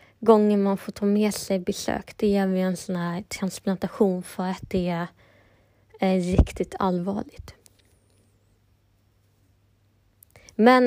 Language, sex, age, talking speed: Swedish, female, 20-39, 115 wpm